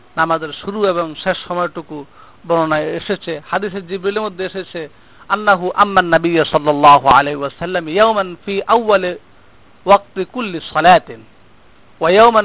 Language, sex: Bengali, male